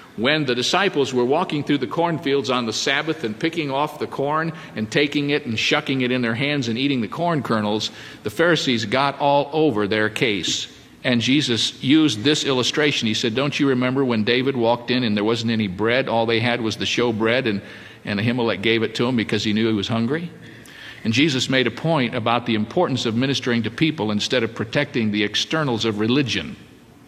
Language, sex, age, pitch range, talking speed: English, male, 50-69, 110-145 Hz, 210 wpm